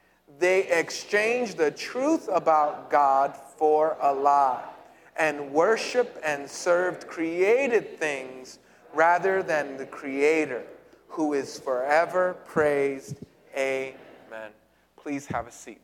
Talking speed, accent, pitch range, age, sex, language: 105 wpm, American, 145-225 Hz, 30-49, male, English